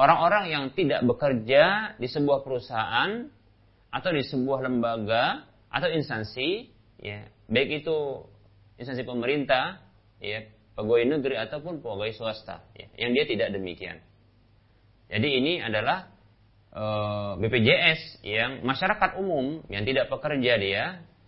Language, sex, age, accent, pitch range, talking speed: Indonesian, male, 30-49, native, 100-135 Hz, 115 wpm